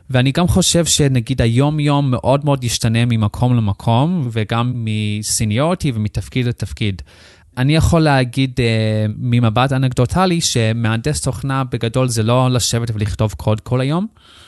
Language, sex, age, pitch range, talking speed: Hebrew, male, 20-39, 110-125 Hz, 120 wpm